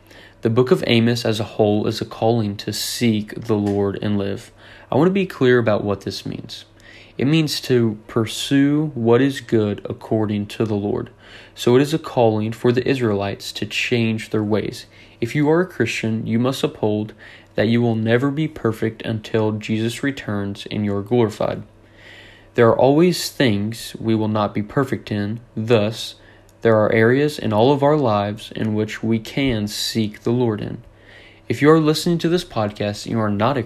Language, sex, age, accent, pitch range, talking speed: English, male, 20-39, American, 105-125 Hz, 195 wpm